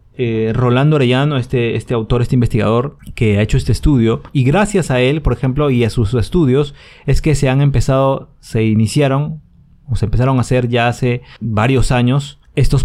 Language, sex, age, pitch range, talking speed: Spanish, male, 30-49, 120-155 Hz, 190 wpm